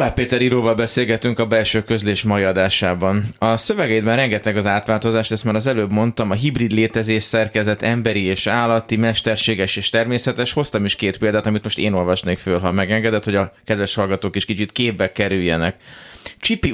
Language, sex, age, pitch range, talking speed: Hungarian, male, 30-49, 100-115 Hz, 170 wpm